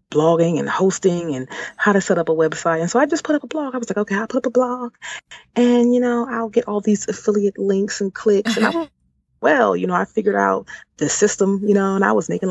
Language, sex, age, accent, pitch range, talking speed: English, female, 30-49, American, 150-215 Hz, 260 wpm